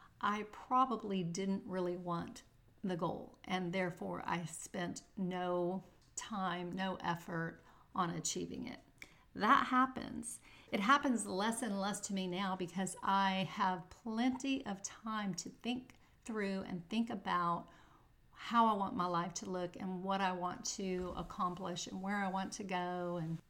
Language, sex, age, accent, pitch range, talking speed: English, female, 40-59, American, 185-225 Hz, 155 wpm